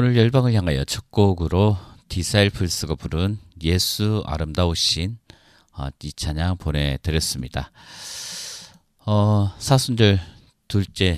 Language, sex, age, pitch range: Korean, male, 40-59, 75-95 Hz